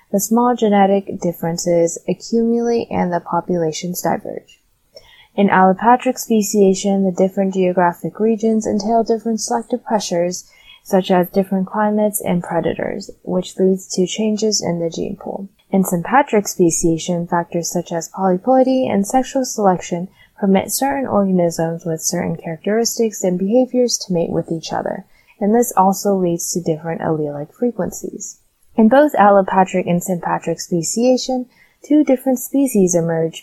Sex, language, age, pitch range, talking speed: female, English, 20-39, 175-220 Hz, 135 wpm